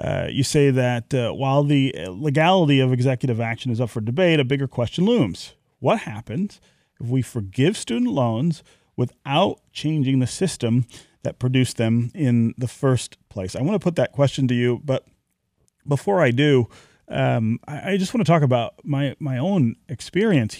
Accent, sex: American, male